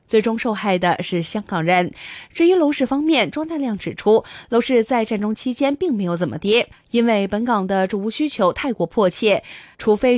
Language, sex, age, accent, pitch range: Chinese, female, 20-39, native, 190-245 Hz